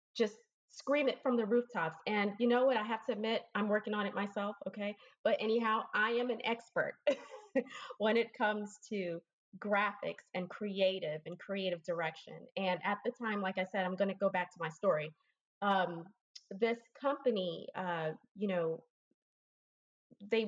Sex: female